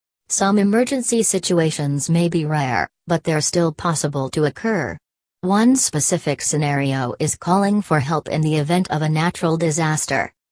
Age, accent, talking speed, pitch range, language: 40-59, American, 150 wpm, 150-180 Hz, English